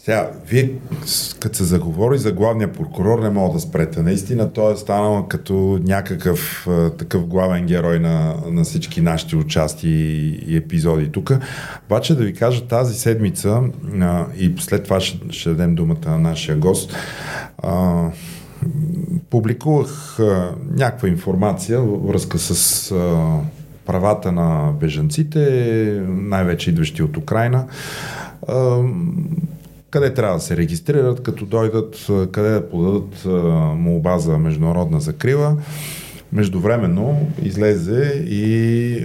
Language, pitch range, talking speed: Bulgarian, 85-140 Hz, 115 wpm